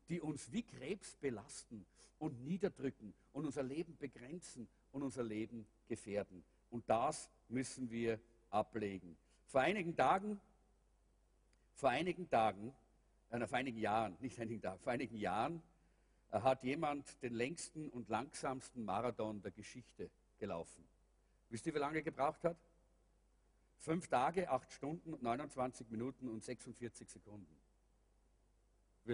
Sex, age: male, 50-69